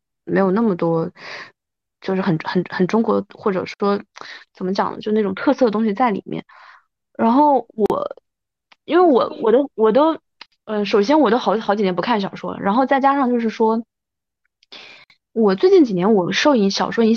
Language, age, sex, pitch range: Chinese, 20-39, female, 185-240 Hz